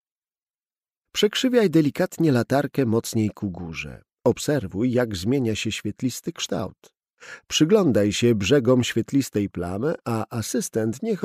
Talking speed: 105 wpm